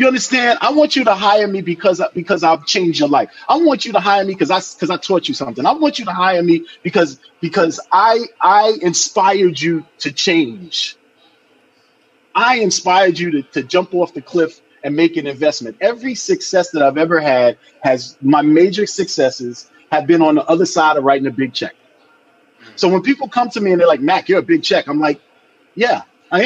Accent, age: American, 30-49